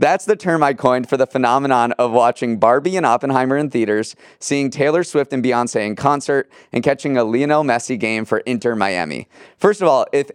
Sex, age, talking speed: male, 30-49, 205 wpm